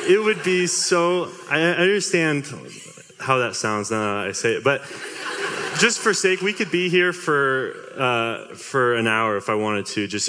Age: 20-39